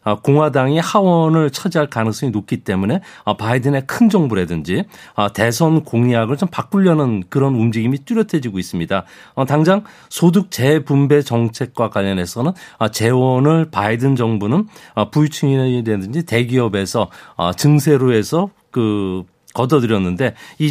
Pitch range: 115-160 Hz